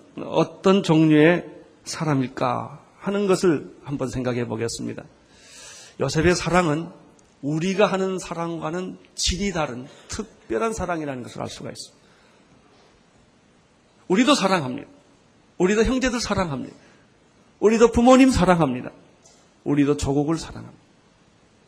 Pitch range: 140-215 Hz